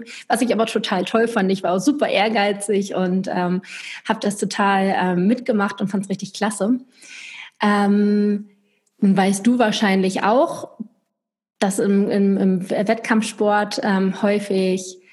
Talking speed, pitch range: 140 wpm, 185-220 Hz